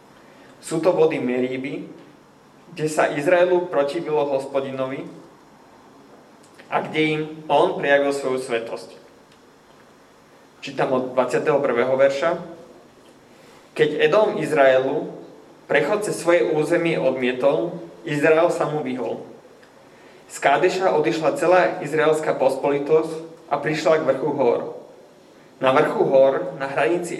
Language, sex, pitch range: Slovak, male, 130-160 Hz